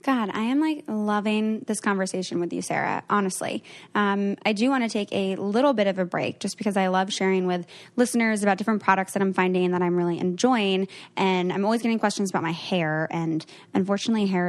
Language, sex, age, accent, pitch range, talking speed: English, female, 10-29, American, 180-215 Hz, 210 wpm